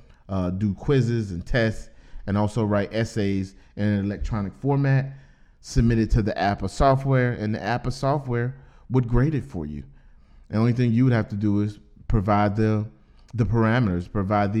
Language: English